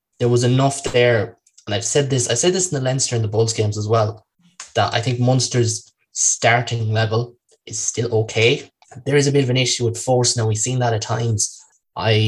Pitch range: 110-120 Hz